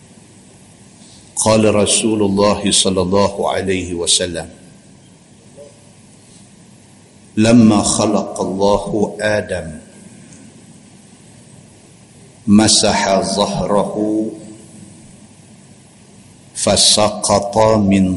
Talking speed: 50 wpm